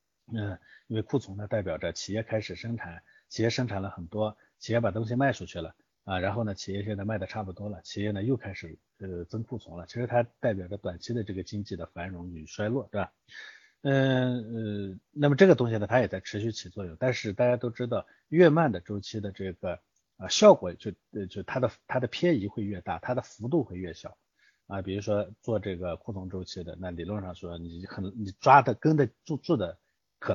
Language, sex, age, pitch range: Chinese, male, 50-69, 95-120 Hz